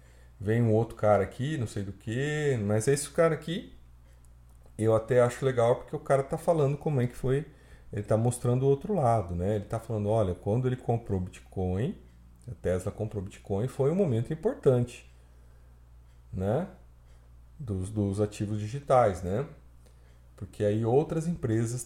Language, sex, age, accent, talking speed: Portuguese, male, 40-59, Brazilian, 165 wpm